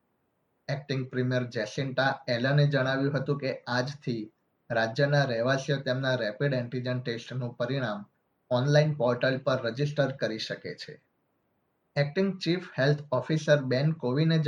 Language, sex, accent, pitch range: Gujarati, male, native, 125-145 Hz